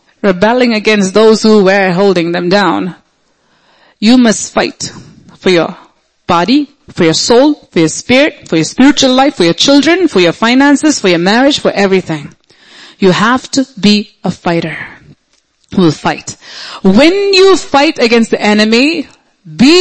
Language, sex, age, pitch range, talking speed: English, female, 30-49, 190-265 Hz, 155 wpm